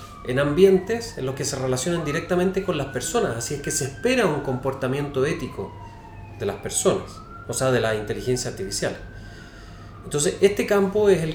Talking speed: 175 wpm